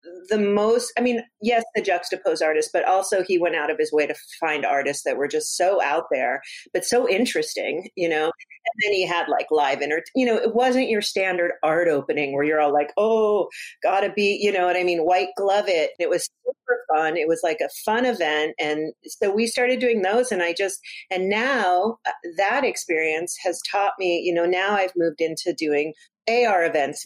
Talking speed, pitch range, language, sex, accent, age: 210 wpm, 165-215 Hz, English, female, American, 40-59